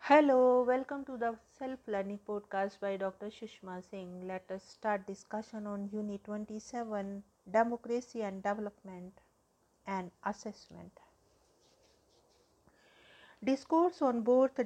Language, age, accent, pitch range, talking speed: English, 50-69, Indian, 190-210 Hz, 100 wpm